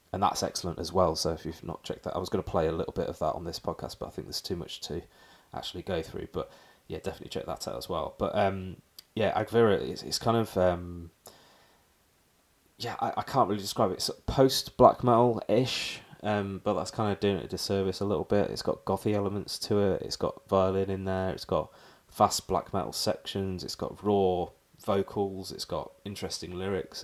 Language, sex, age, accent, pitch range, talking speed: English, male, 20-39, British, 85-100 Hz, 215 wpm